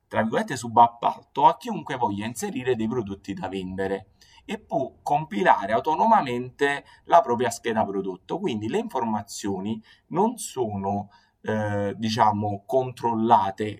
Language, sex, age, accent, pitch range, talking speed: Italian, male, 30-49, native, 105-125 Hz, 115 wpm